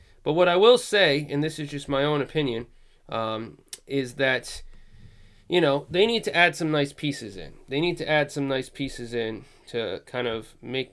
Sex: male